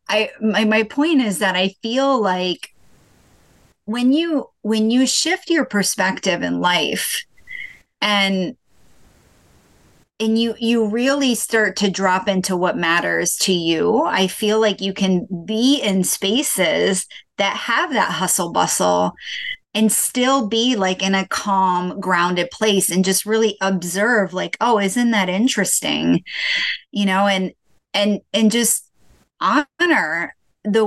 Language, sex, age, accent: English, female, 30-49, American